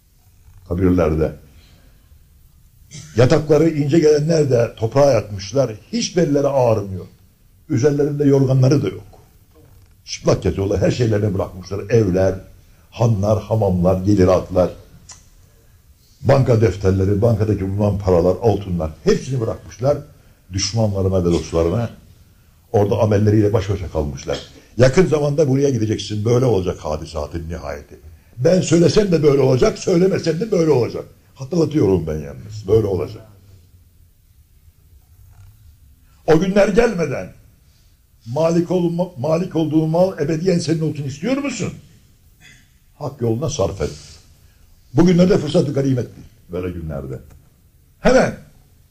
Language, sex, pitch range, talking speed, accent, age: Turkish, male, 90-145 Hz, 105 wpm, native, 60-79